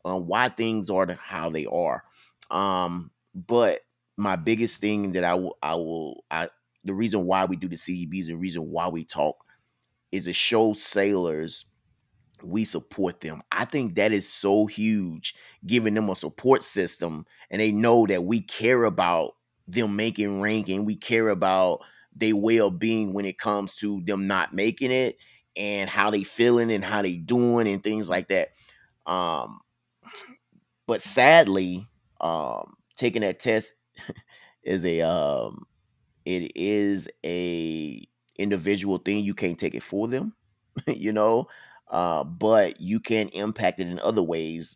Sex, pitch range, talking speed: male, 90-110 Hz, 155 wpm